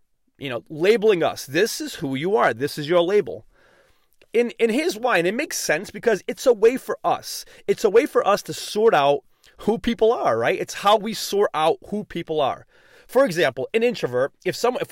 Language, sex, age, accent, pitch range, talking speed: English, male, 30-49, American, 160-245 Hz, 215 wpm